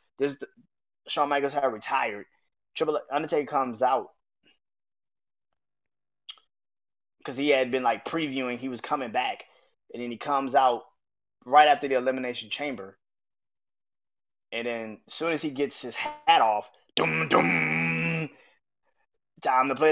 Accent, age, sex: American, 20-39, male